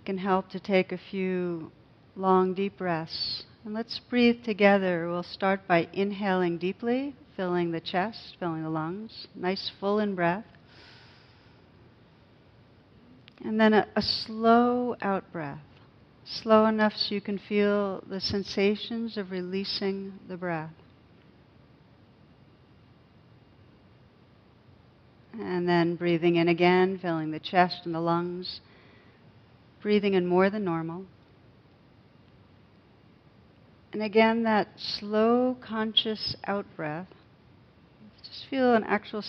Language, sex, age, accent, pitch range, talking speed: English, female, 50-69, American, 170-205 Hz, 110 wpm